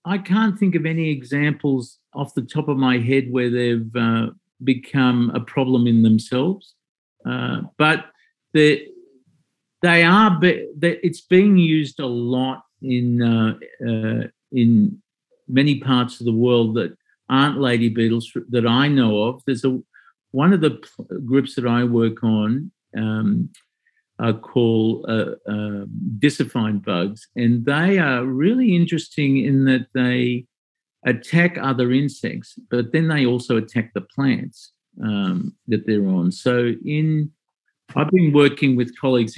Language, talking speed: English, 140 wpm